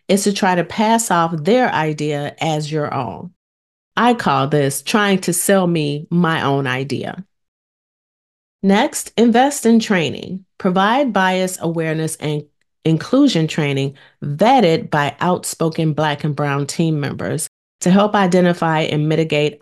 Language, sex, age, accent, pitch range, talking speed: English, female, 40-59, American, 150-190 Hz, 135 wpm